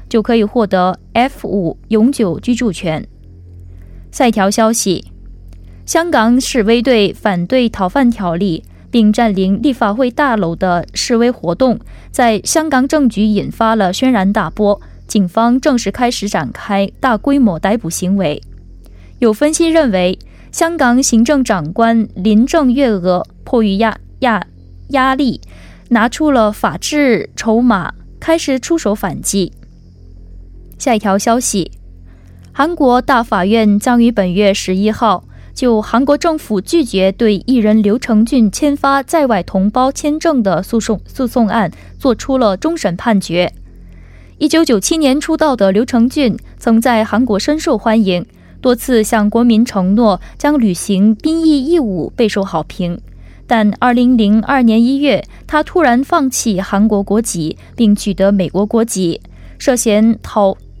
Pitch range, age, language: 190-255 Hz, 20-39, Korean